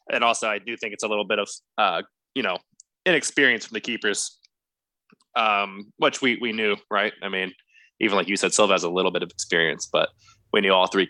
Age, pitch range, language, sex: 20-39, 95-120 Hz, English, male